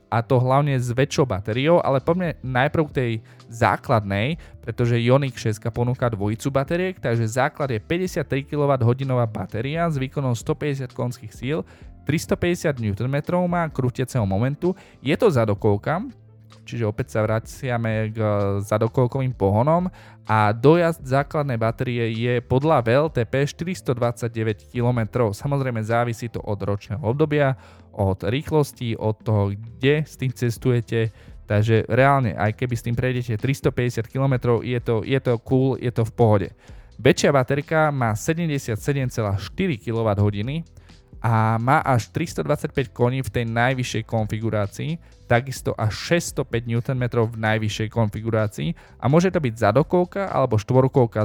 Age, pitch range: 20-39, 110-140 Hz